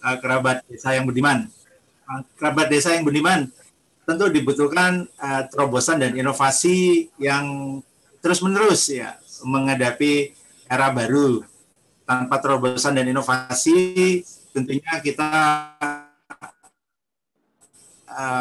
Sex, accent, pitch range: male, native, 125-150 Hz